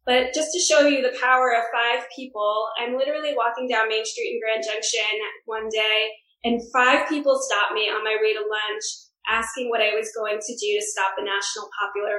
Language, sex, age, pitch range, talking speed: English, female, 20-39, 225-275 Hz, 210 wpm